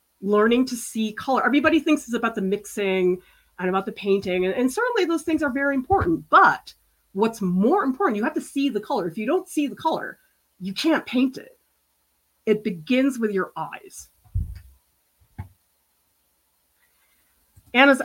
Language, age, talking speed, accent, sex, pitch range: English, 30-49, 160 wpm, American, female, 180-250 Hz